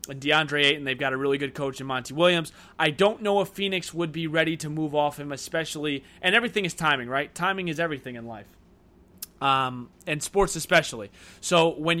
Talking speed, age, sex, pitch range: 200 wpm, 20-39, male, 130-165 Hz